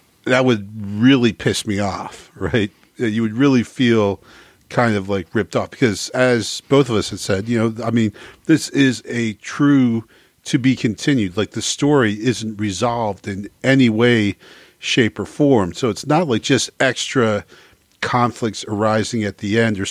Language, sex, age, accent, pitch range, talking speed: English, male, 40-59, American, 100-125 Hz, 170 wpm